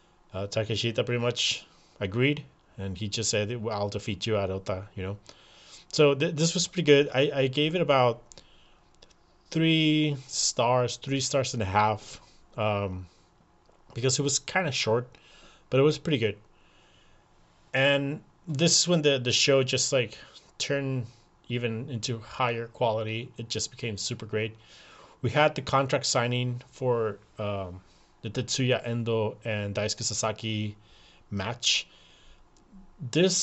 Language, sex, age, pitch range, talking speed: English, male, 20-39, 110-140 Hz, 140 wpm